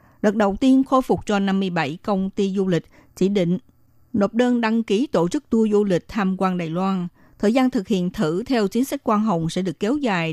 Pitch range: 175-230 Hz